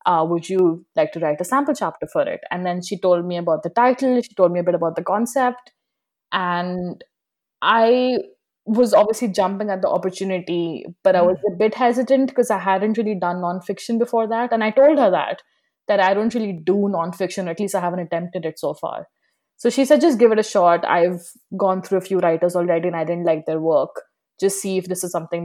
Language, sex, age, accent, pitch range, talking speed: English, female, 20-39, Indian, 170-205 Hz, 225 wpm